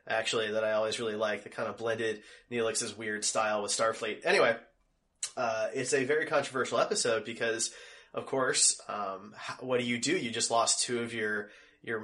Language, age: English, 20-39